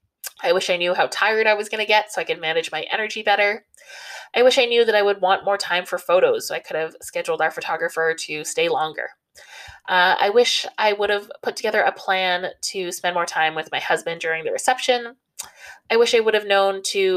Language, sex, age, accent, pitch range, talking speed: English, female, 20-39, American, 165-250 Hz, 235 wpm